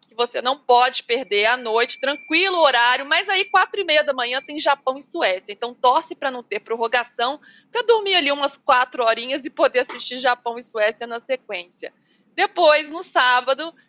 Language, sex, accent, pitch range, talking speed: Portuguese, female, Brazilian, 230-300 Hz, 195 wpm